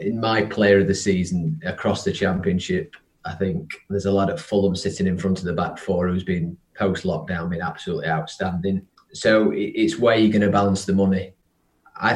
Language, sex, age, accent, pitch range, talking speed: English, male, 20-39, British, 95-105 Hz, 200 wpm